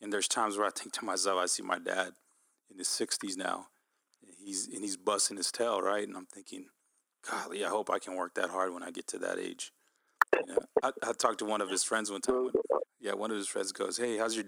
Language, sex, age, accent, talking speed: English, male, 30-49, American, 240 wpm